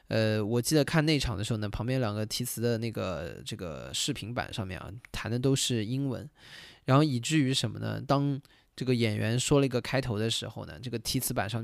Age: 20-39